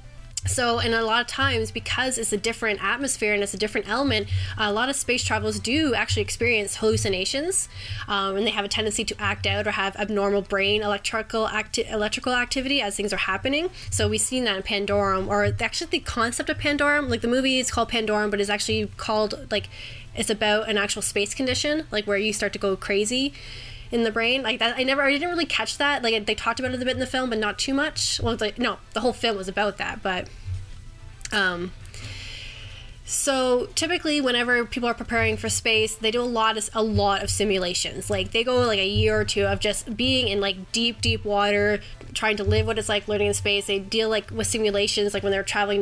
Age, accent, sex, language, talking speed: 10-29, American, female, English, 225 wpm